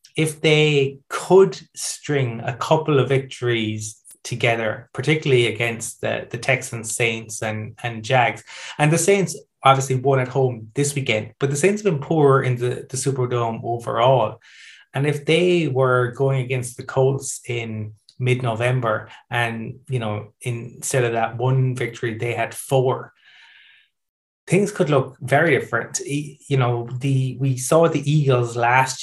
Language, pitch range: English, 120-135 Hz